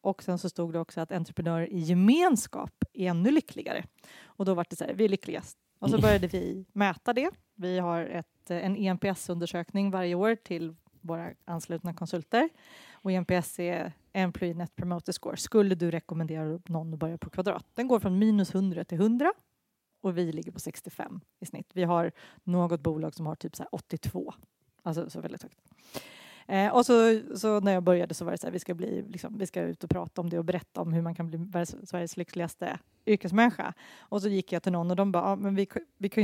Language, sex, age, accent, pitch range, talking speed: Swedish, female, 30-49, native, 170-205 Hz, 215 wpm